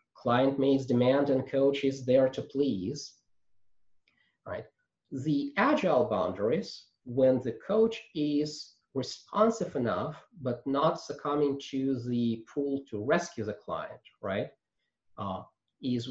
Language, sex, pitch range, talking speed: English, male, 110-140 Hz, 120 wpm